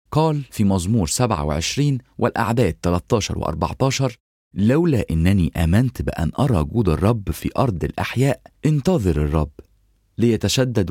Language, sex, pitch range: English, male, 80-120 Hz